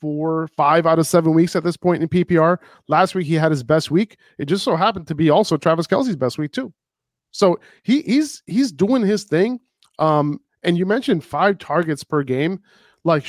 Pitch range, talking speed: 140-170 Hz, 210 wpm